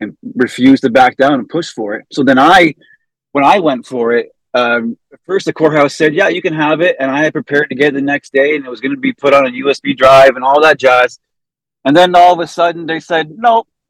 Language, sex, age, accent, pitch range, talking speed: English, male, 30-49, American, 120-160 Hz, 265 wpm